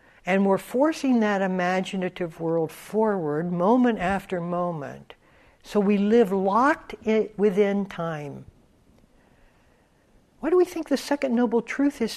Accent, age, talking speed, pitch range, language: American, 60-79, 125 wpm, 170-235 Hz, English